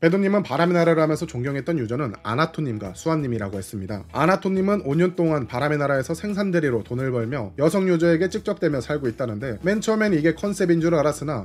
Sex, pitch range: male, 115-165 Hz